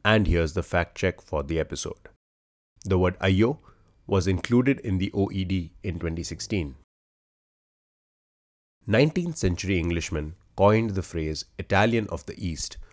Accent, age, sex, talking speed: Indian, 30-49, male, 130 wpm